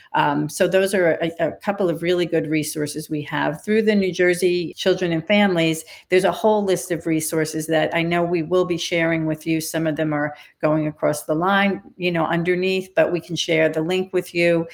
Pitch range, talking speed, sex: 160-195 Hz, 220 wpm, female